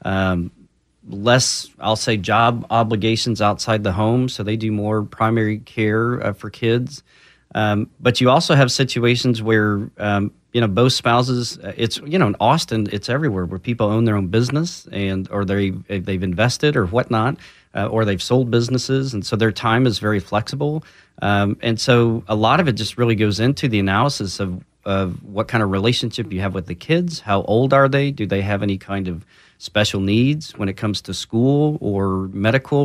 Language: English